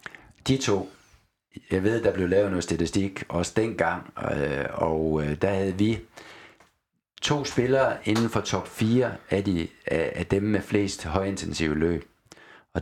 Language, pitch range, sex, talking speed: Danish, 85-105 Hz, male, 140 wpm